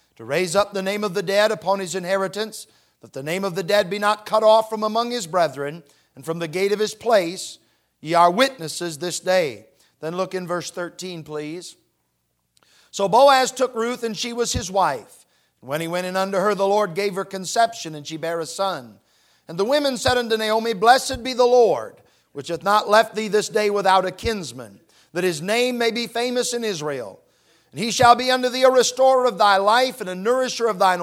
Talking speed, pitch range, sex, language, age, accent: 220 wpm, 175-230 Hz, male, English, 50-69, American